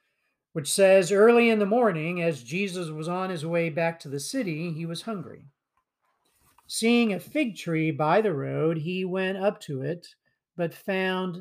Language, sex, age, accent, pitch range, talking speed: English, male, 50-69, American, 155-205 Hz, 175 wpm